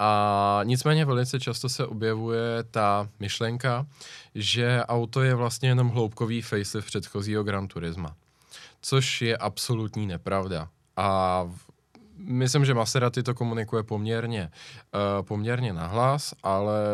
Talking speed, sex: 115 wpm, male